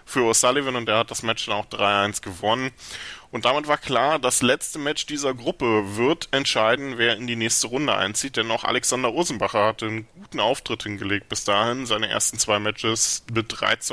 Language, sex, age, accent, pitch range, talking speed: German, male, 10-29, German, 110-130 Hz, 190 wpm